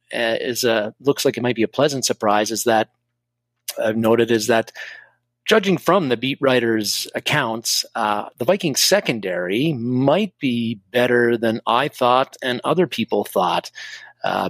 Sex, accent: male, American